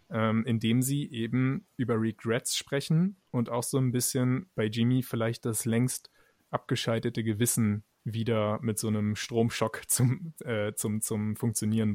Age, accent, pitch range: 20-39, German, 115-130 Hz